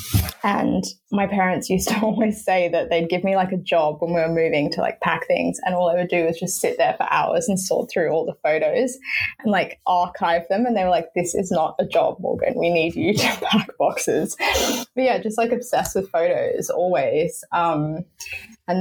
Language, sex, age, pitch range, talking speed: English, female, 20-39, 165-205 Hz, 220 wpm